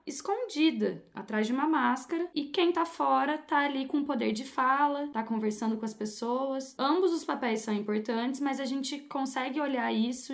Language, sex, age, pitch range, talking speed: Portuguese, female, 10-29, 220-285 Hz, 180 wpm